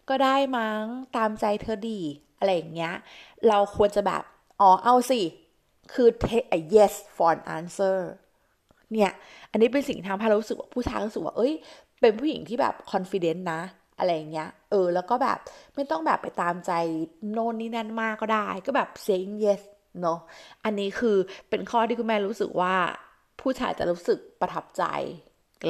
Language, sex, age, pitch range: Thai, female, 20-39, 180-235 Hz